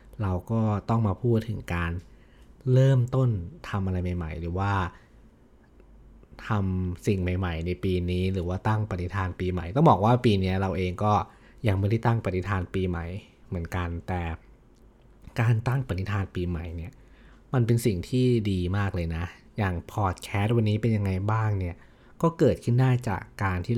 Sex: male